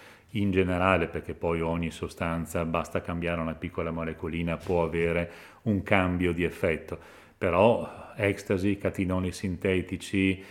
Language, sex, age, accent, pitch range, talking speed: Italian, male, 40-59, native, 90-100 Hz, 120 wpm